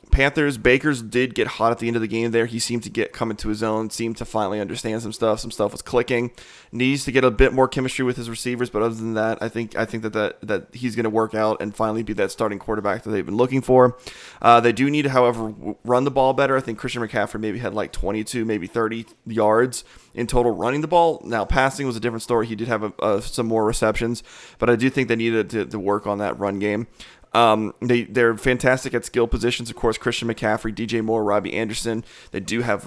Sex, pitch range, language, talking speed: male, 110-125 Hz, English, 250 wpm